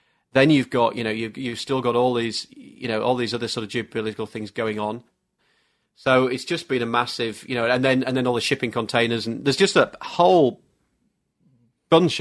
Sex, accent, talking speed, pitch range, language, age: male, British, 215 wpm, 115-130 Hz, English, 30-49